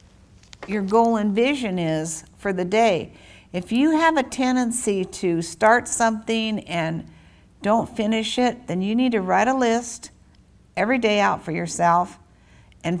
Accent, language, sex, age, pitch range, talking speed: American, English, female, 60-79, 145-235 Hz, 150 wpm